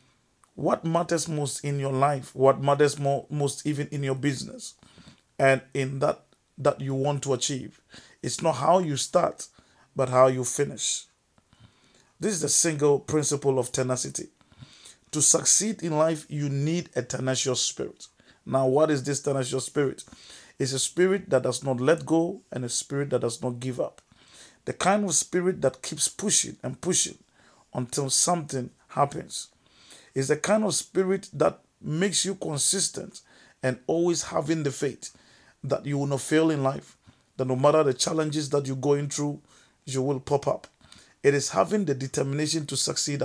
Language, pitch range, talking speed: English, 130-155 Hz, 170 wpm